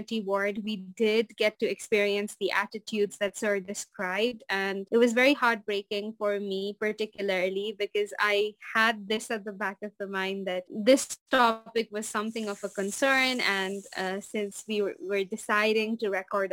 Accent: Indian